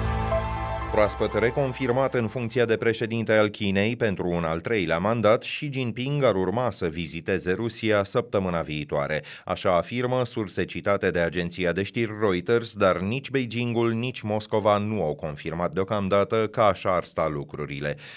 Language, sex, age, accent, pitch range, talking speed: Romanian, male, 30-49, native, 90-115 Hz, 150 wpm